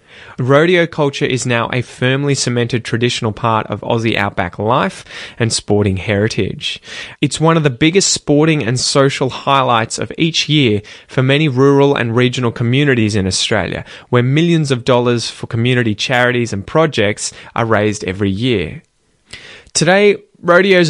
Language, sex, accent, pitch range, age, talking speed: English, male, Australian, 110-140 Hz, 20-39, 145 wpm